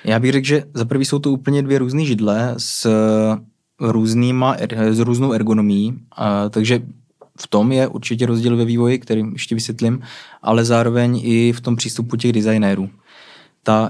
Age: 20-39